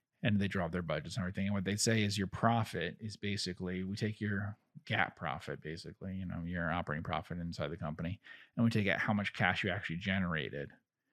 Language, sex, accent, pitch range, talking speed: English, male, American, 90-115 Hz, 215 wpm